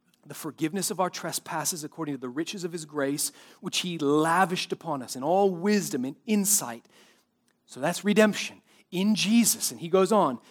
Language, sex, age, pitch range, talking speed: English, male, 30-49, 170-230 Hz, 175 wpm